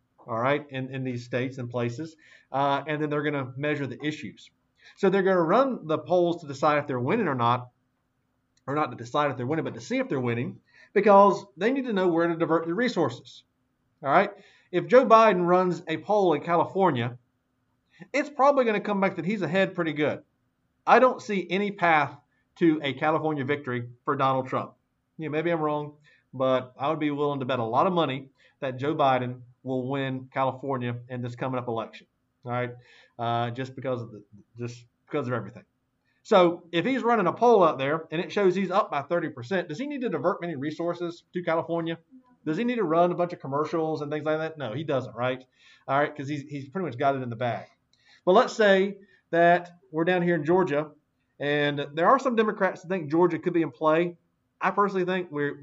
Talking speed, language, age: 220 wpm, English, 40-59